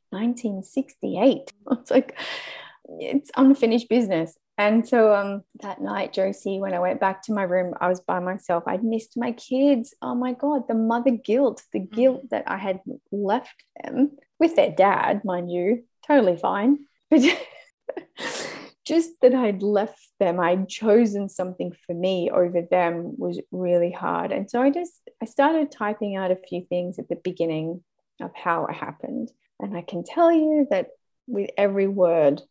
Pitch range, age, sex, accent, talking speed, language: 180-260 Hz, 20-39, female, Australian, 165 wpm, English